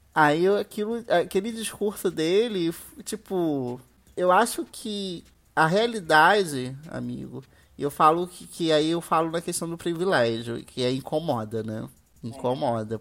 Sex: male